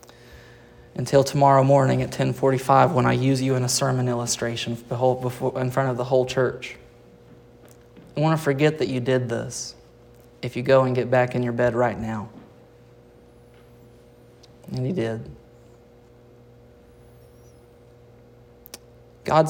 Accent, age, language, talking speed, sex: American, 30-49, English, 130 wpm, male